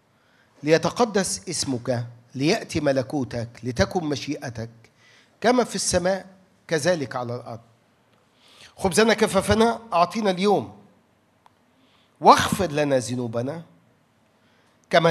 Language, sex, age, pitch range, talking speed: Arabic, male, 50-69, 135-200 Hz, 80 wpm